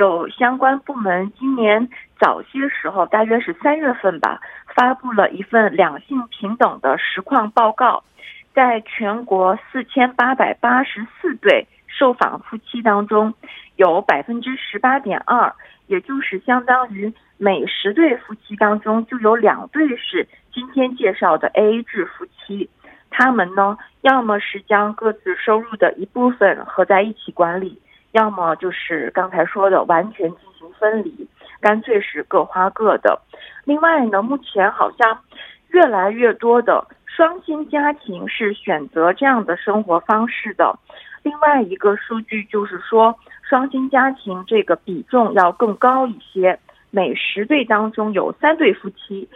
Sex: female